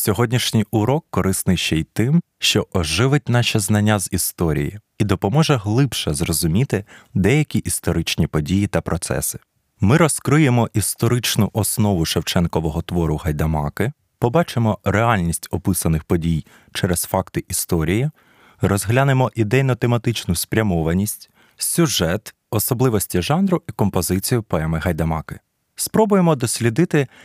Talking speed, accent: 105 wpm, native